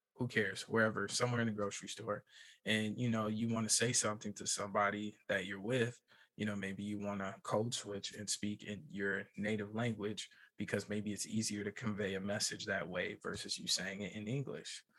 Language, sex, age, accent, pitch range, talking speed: English, male, 20-39, American, 100-115 Hz, 205 wpm